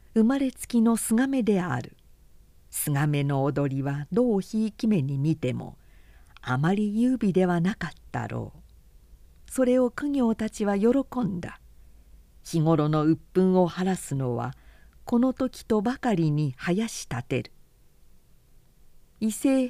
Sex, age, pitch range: female, 50-69, 145-230 Hz